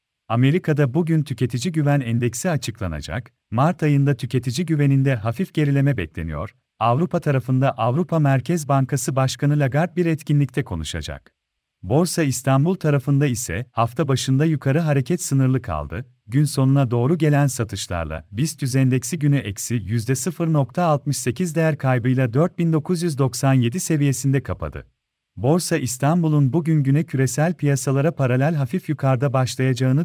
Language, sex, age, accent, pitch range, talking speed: Turkish, male, 40-59, native, 125-155 Hz, 115 wpm